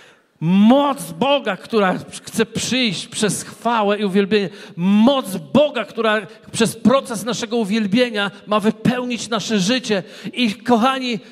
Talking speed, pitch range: 115 wpm, 195-240 Hz